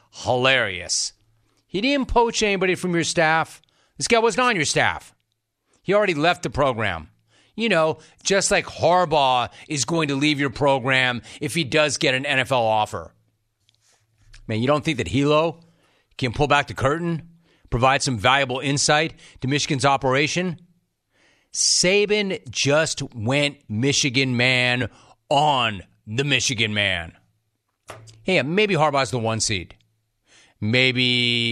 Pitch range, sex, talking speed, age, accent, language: 115-160 Hz, male, 135 wpm, 40-59, American, English